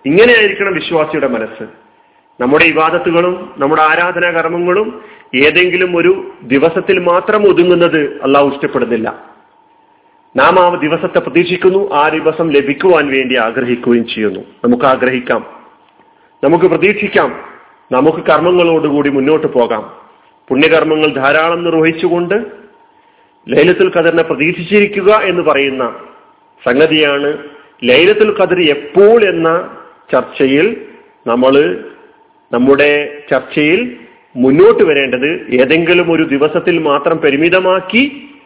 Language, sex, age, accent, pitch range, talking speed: Malayalam, male, 40-59, native, 135-185 Hz, 90 wpm